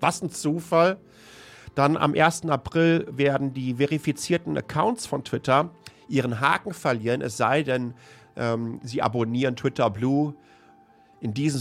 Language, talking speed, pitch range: German, 135 wpm, 110-140 Hz